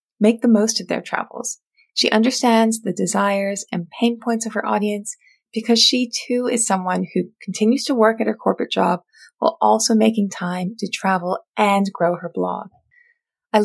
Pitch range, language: 185-235 Hz, English